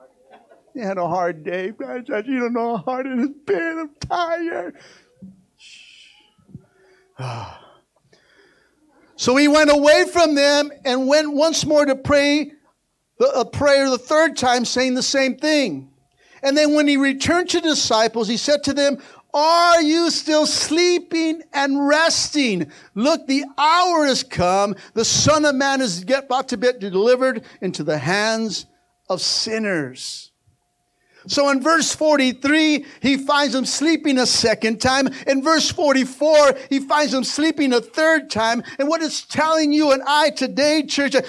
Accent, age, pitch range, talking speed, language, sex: American, 60-79, 220-300 Hz, 150 wpm, English, male